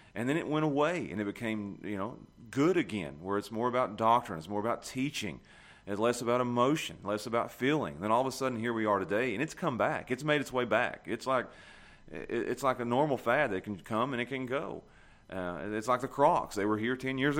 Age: 30-49